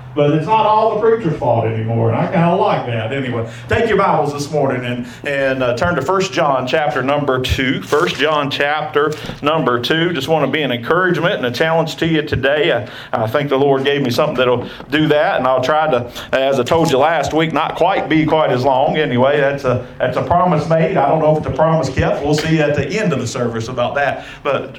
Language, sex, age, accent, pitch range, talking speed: English, male, 40-59, American, 135-190 Hz, 245 wpm